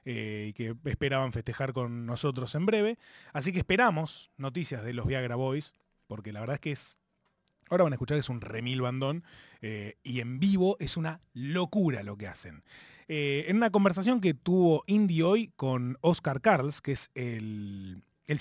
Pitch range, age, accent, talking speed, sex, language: 130-195 Hz, 30-49, Argentinian, 185 wpm, male, Spanish